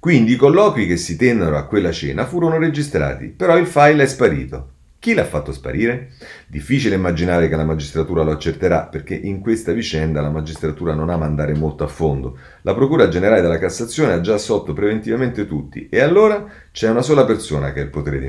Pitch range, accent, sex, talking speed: 85-135 Hz, native, male, 195 wpm